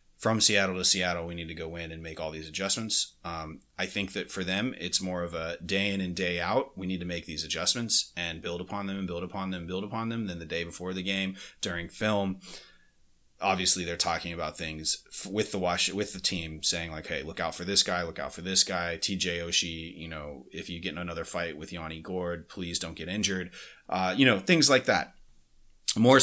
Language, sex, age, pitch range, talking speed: English, male, 30-49, 85-100 Hz, 240 wpm